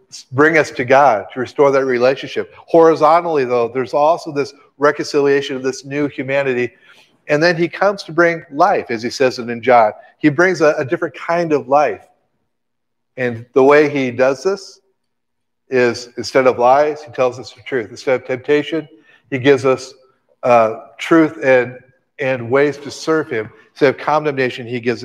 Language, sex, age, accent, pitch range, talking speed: English, male, 50-69, American, 125-150 Hz, 175 wpm